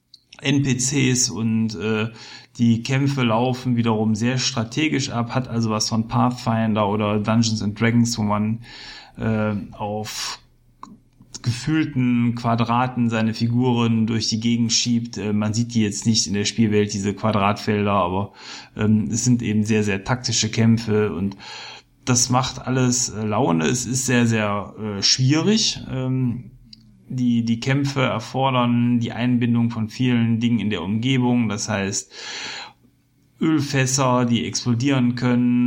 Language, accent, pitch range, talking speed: German, German, 110-125 Hz, 135 wpm